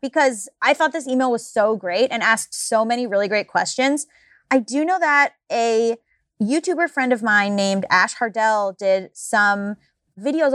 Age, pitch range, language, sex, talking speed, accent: 20-39, 200-270 Hz, English, female, 170 wpm, American